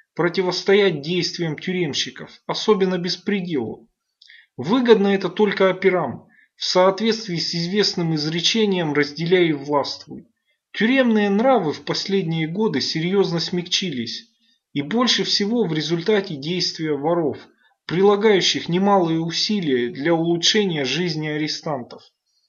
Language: Russian